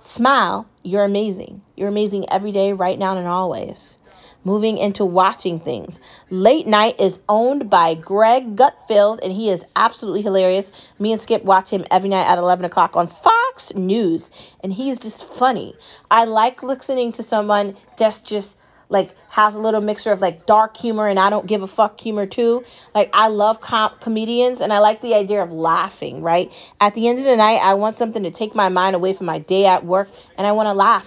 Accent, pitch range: American, 190-235 Hz